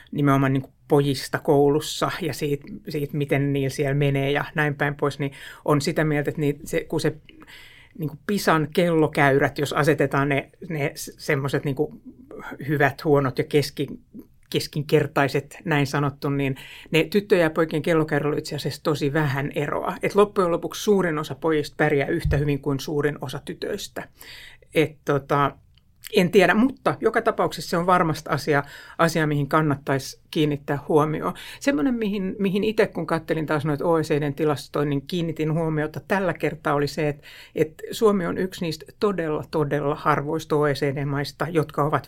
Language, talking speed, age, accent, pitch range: Finnish, 155 wpm, 60-79, native, 145-165 Hz